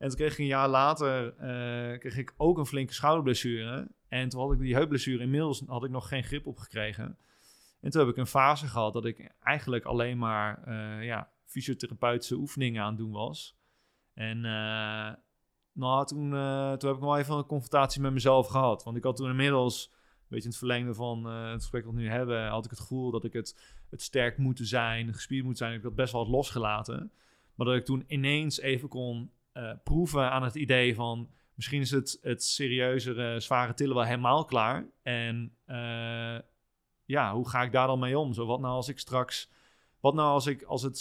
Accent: Dutch